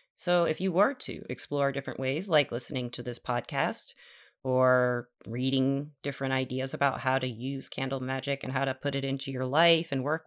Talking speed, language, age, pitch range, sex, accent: 195 wpm, English, 30-49, 130-180 Hz, female, American